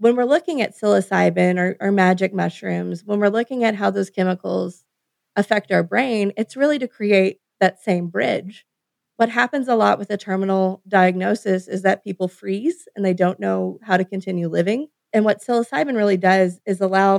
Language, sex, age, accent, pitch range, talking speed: English, female, 30-49, American, 180-225 Hz, 185 wpm